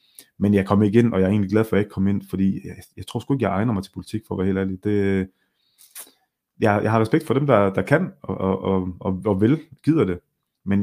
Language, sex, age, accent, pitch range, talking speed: Danish, male, 30-49, native, 95-125 Hz, 285 wpm